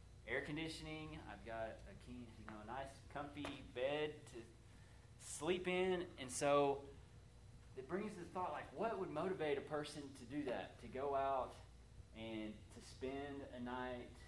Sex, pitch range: male, 100-120 Hz